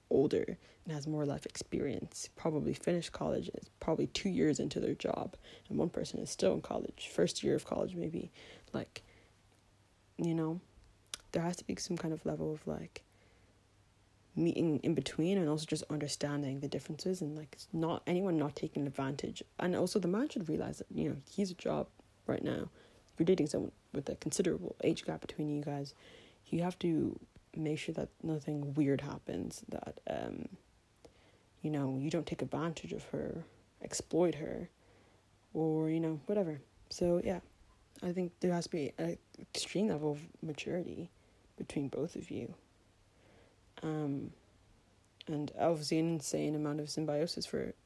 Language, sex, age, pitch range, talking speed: English, female, 20-39, 130-165 Hz, 170 wpm